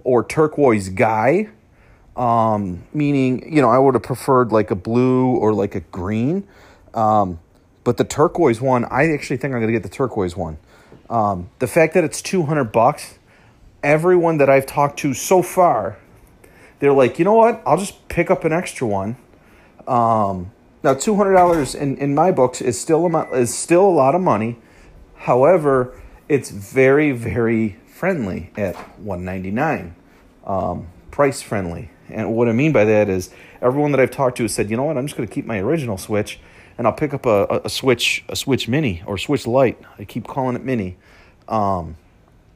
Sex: male